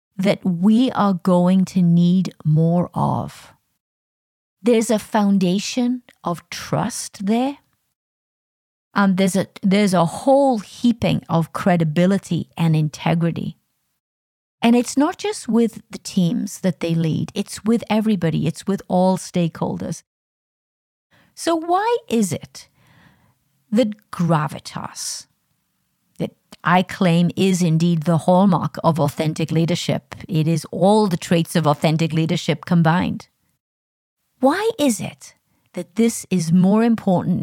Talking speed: 120 wpm